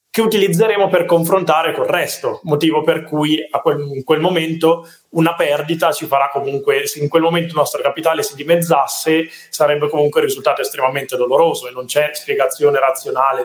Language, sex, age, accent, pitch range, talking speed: Italian, male, 20-39, native, 130-170 Hz, 170 wpm